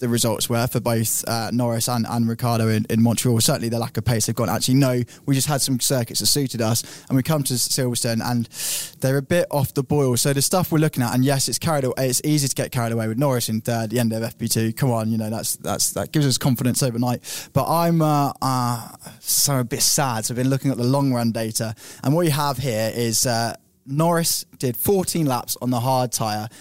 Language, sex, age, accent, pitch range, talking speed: English, male, 10-29, British, 115-145 Hz, 250 wpm